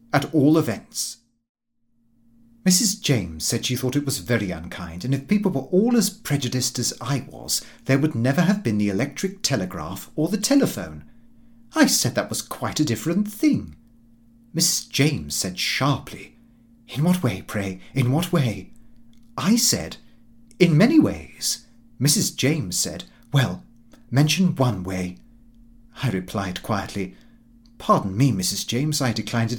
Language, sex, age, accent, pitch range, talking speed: English, male, 40-59, British, 115-150 Hz, 150 wpm